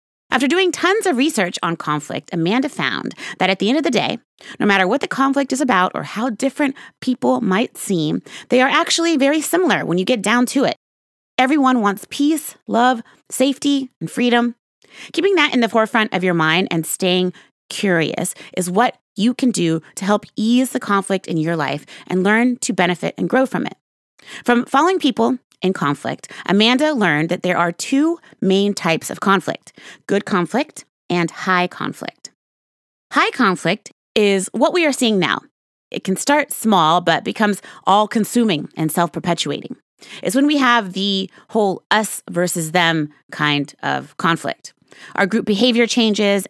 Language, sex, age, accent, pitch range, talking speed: English, female, 30-49, American, 180-255 Hz, 170 wpm